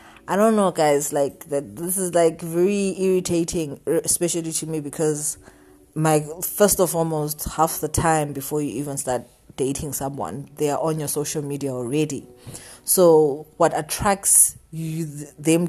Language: English